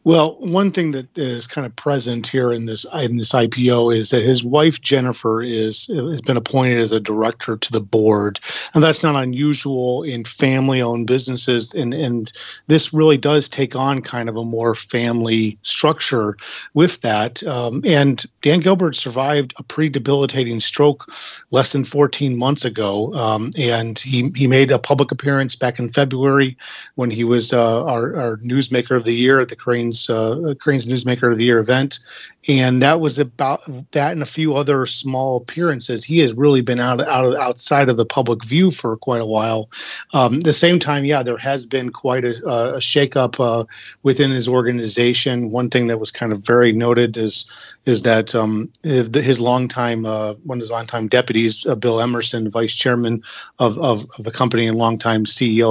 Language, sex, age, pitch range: English, male, 40-59, 115-140 Hz